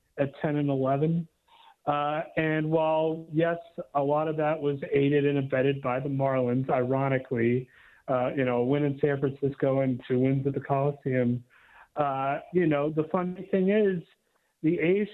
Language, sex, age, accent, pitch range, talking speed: English, male, 40-59, American, 140-165 Hz, 165 wpm